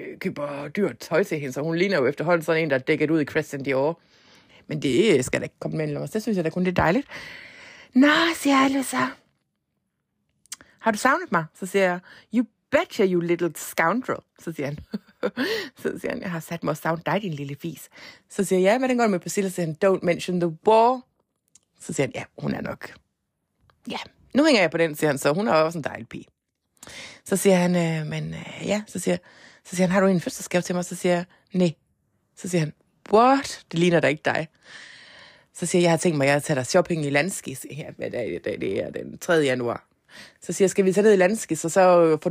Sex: female